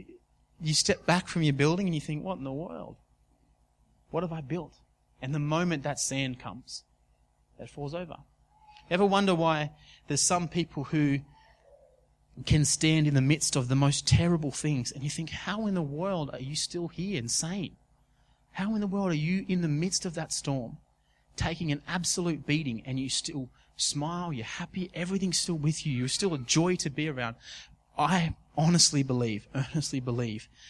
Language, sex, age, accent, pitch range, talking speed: English, male, 30-49, Australian, 130-170 Hz, 185 wpm